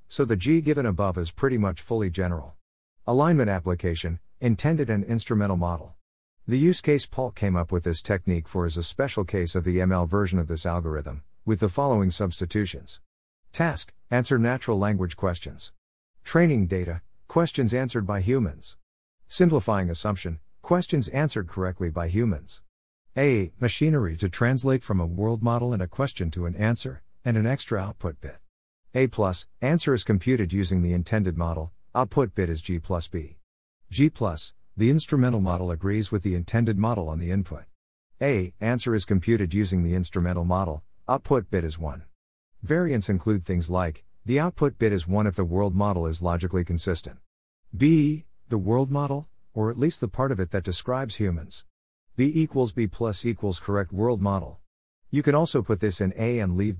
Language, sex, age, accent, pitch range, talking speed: English, male, 50-69, American, 85-120 Hz, 175 wpm